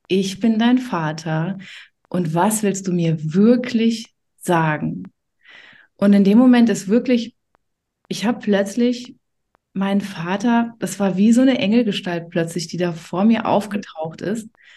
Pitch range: 180-225 Hz